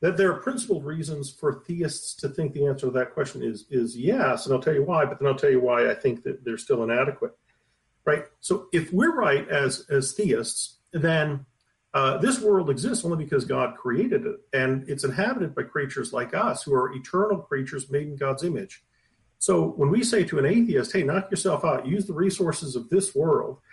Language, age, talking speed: English, 50-69, 210 wpm